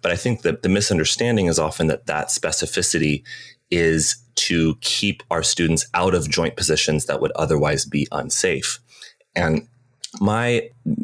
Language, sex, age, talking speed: English, male, 30-49, 145 wpm